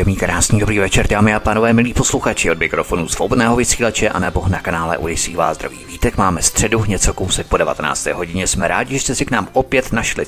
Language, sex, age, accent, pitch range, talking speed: Czech, male, 30-49, native, 95-120 Hz, 205 wpm